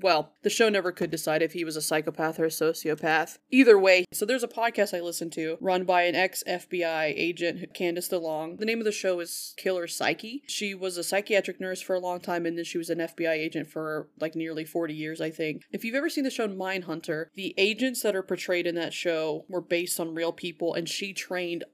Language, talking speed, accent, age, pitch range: English, 230 wpm, American, 20-39, 165-195 Hz